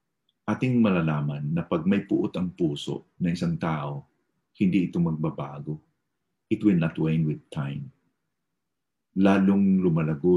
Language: English